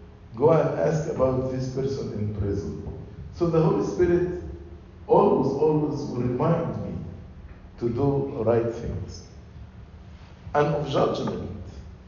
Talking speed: 120 wpm